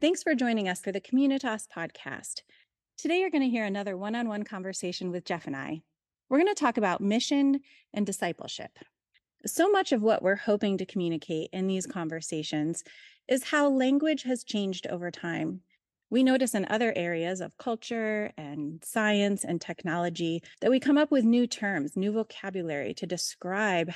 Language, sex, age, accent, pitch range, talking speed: English, female, 30-49, American, 180-250 Hz, 170 wpm